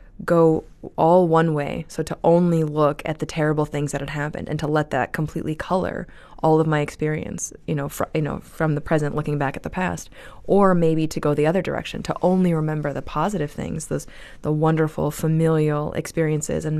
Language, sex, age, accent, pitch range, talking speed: English, female, 20-39, American, 150-170 Hz, 200 wpm